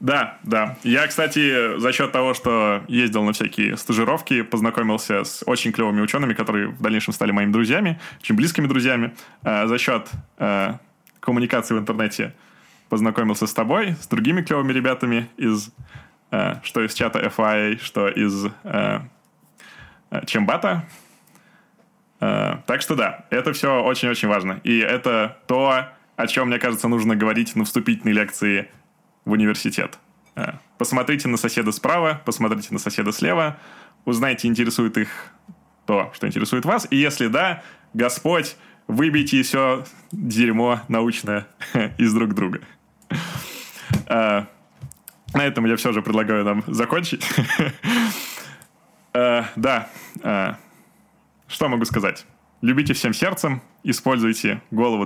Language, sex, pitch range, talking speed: Russian, male, 110-140 Hz, 125 wpm